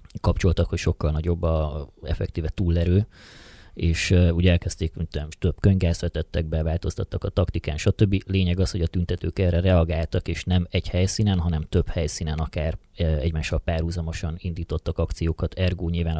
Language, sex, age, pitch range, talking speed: Hungarian, male, 30-49, 80-95 Hz, 150 wpm